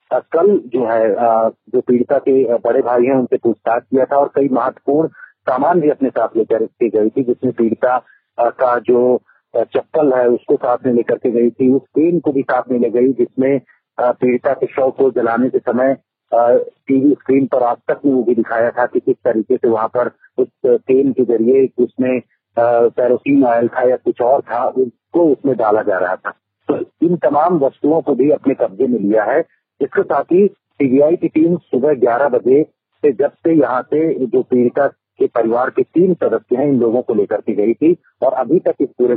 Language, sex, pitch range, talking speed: Hindi, male, 120-175 Hz, 205 wpm